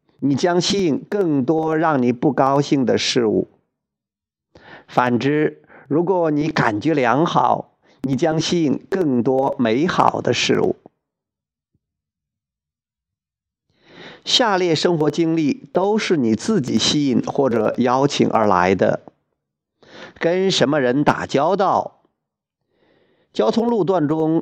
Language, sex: Chinese, male